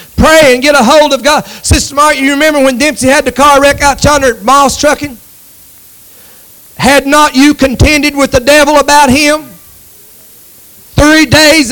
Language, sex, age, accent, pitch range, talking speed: English, male, 40-59, American, 255-325 Hz, 165 wpm